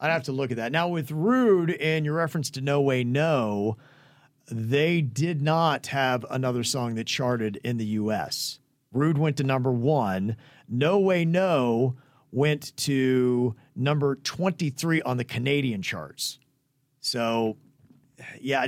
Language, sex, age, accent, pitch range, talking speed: English, male, 40-59, American, 120-150 Hz, 145 wpm